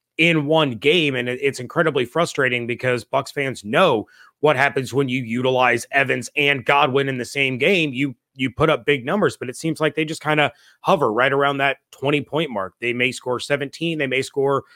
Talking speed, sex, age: 205 wpm, male, 30-49